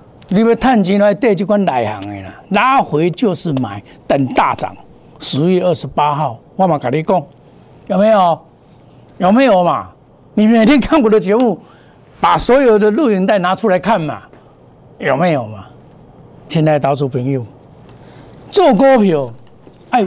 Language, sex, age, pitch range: Chinese, male, 60-79, 155-260 Hz